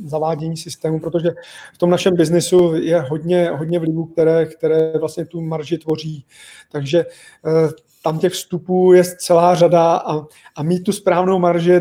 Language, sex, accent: Czech, male, native